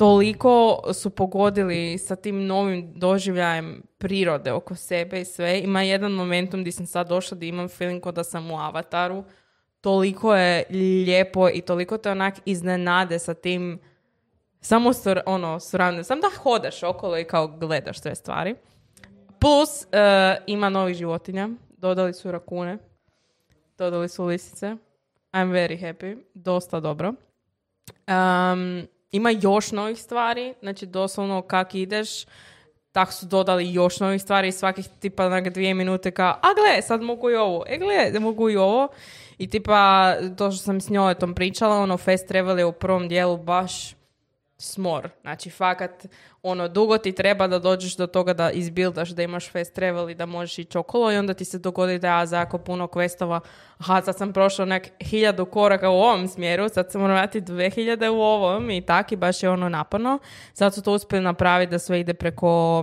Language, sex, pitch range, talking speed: Croatian, female, 175-195 Hz, 170 wpm